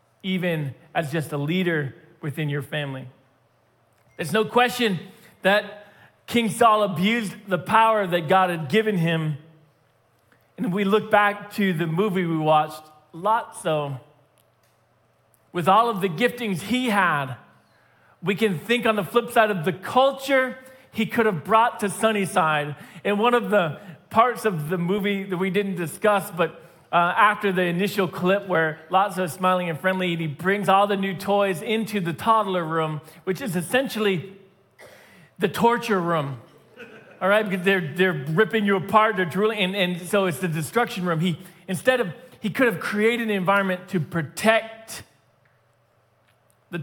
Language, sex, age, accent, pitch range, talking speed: English, male, 40-59, American, 160-210 Hz, 160 wpm